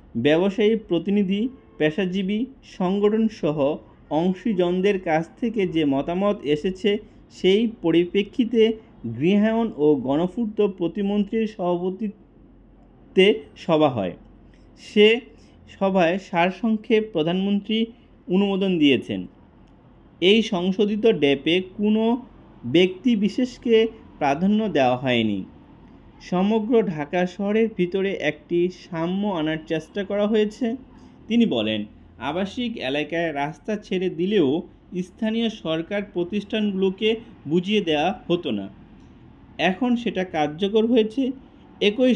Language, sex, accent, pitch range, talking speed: English, male, Indian, 160-220 Hz, 100 wpm